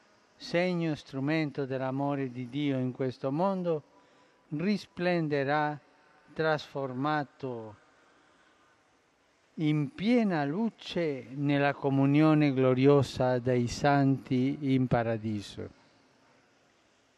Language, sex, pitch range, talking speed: Italian, male, 135-180 Hz, 75 wpm